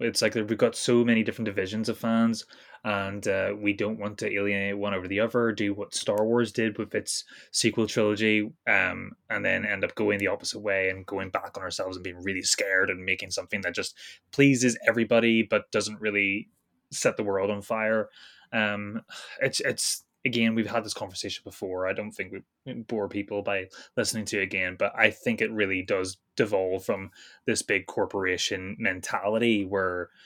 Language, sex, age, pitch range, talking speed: English, male, 20-39, 100-115 Hz, 190 wpm